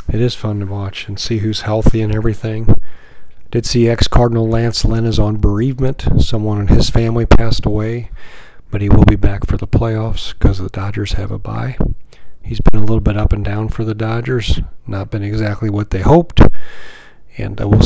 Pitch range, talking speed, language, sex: 105-125 Hz, 195 wpm, English, male